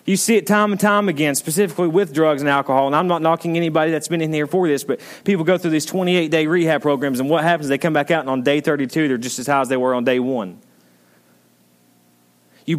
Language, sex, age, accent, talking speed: English, male, 30-49, American, 255 wpm